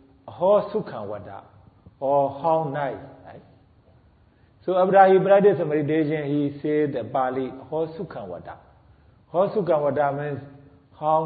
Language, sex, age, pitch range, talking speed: Vietnamese, male, 50-69, 125-170 Hz, 105 wpm